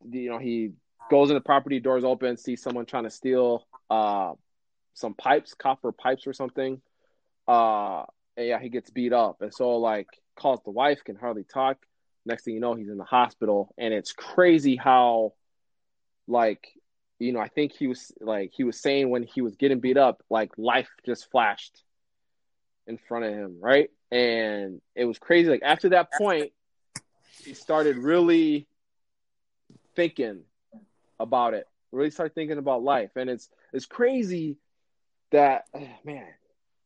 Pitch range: 120-155 Hz